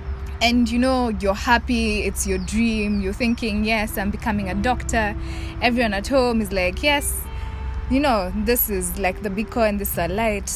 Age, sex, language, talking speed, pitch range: 20-39, female, English, 190 wpm, 190-240 Hz